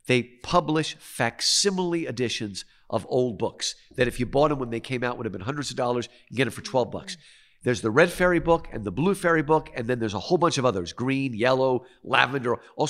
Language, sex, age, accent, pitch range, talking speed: English, male, 50-69, American, 110-150 Hz, 235 wpm